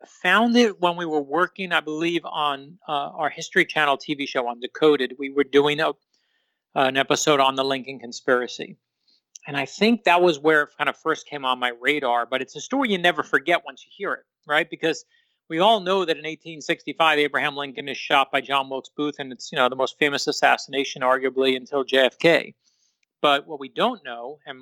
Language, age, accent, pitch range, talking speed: English, 40-59, American, 140-175 Hz, 210 wpm